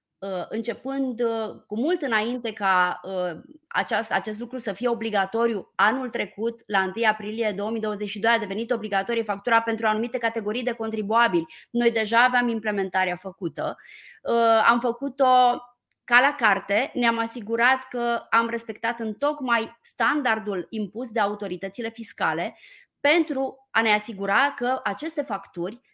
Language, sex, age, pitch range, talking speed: Romanian, female, 20-39, 200-245 Hz, 125 wpm